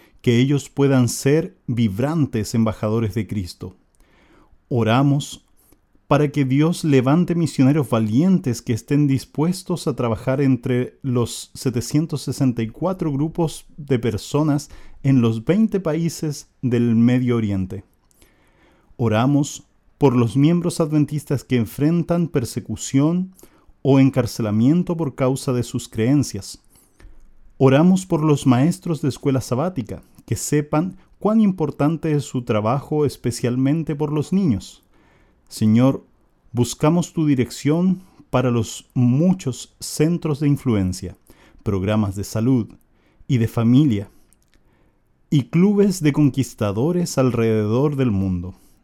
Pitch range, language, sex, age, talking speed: 115-150 Hz, Portuguese, male, 40-59, 110 wpm